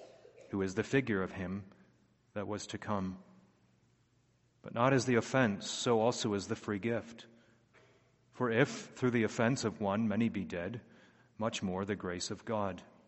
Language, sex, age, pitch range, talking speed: English, male, 30-49, 105-125 Hz, 170 wpm